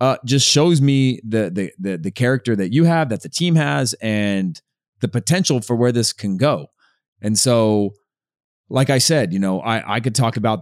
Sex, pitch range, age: male, 105-140 Hz, 30-49